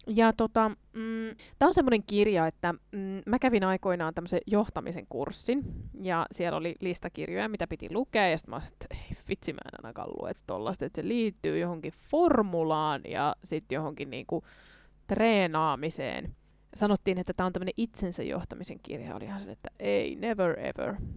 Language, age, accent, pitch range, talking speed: Finnish, 20-39, native, 175-225 Hz, 150 wpm